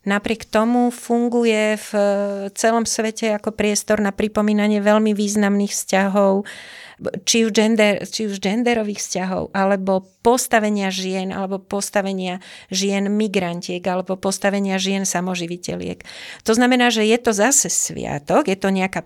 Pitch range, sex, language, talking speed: 180-215 Hz, female, Slovak, 130 wpm